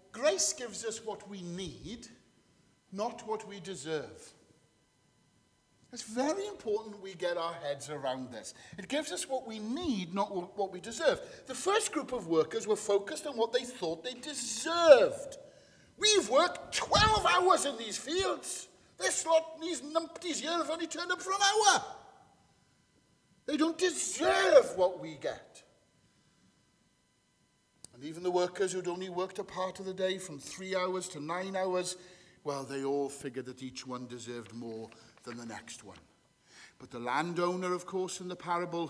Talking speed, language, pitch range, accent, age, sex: 165 wpm, English, 140-235 Hz, British, 50-69, male